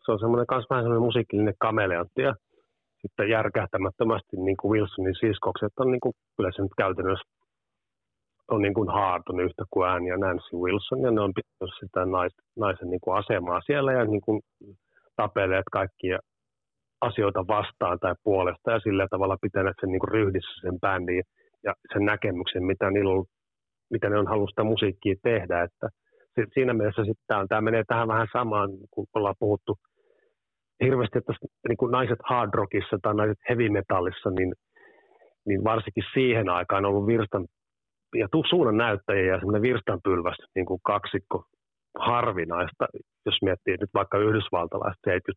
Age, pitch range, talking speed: 30-49, 95-120 Hz, 145 wpm